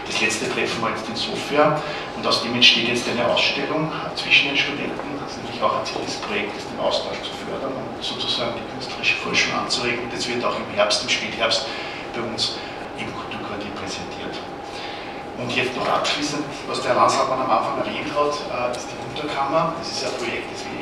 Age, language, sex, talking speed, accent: 50-69, German, male, 195 wpm, German